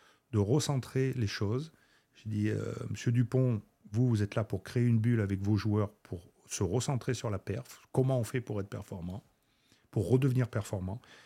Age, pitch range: 40-59, 100-140 Hz